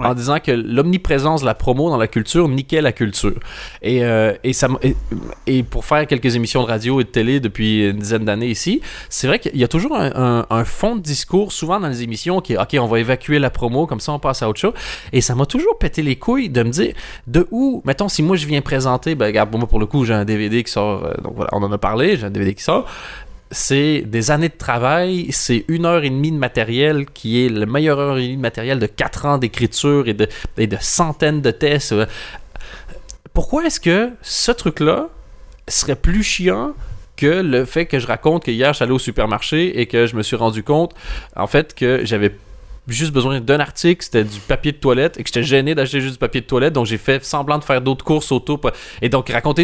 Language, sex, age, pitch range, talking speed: French, male, 20-39, 115-155 Hz, 245 wpm